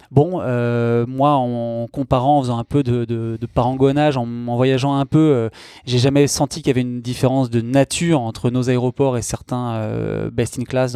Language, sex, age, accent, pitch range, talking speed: French, male, 20-39, French, 125-155 Hz, 215 wpm